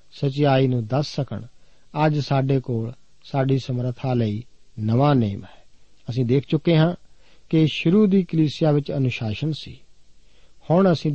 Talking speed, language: 145 wpm, Punjabi